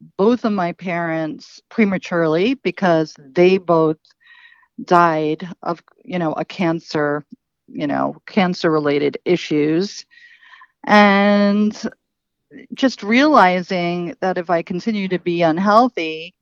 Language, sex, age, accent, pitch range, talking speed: English, female, 50-69, American, 165-215 Hz, 105 wpm